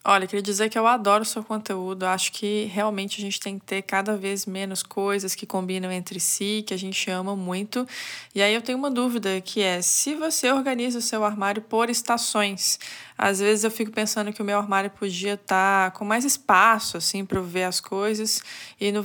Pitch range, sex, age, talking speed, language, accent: 200-250 Hz, female, 20-39, 215 wpm, Portuguese, Brazilian